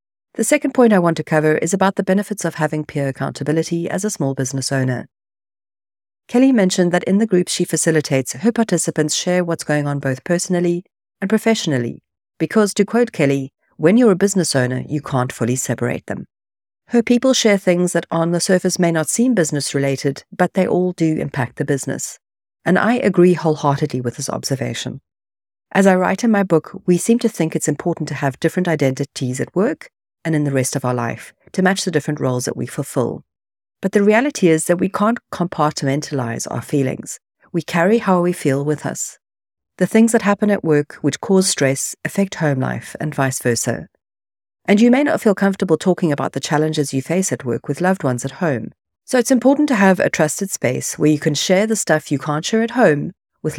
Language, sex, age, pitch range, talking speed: English, female, 50-69, 135-195 Hz, 205 wpm